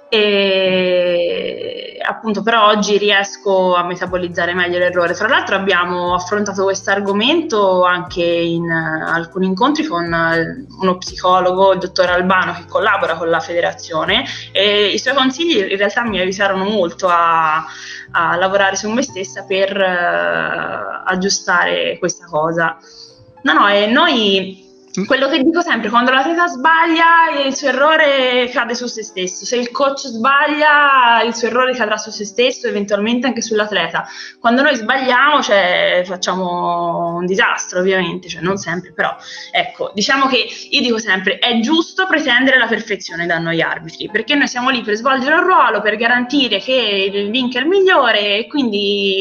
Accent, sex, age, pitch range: native, female, 20-39, 185-260 Hz